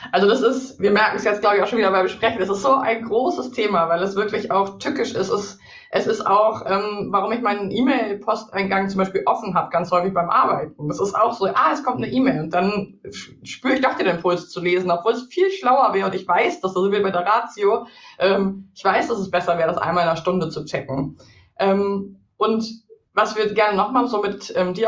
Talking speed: 240 wpm